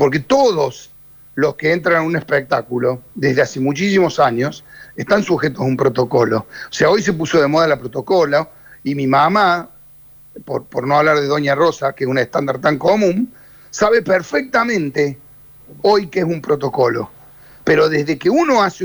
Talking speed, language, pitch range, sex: 175 wpm, Spanish, 140-190 Hz, male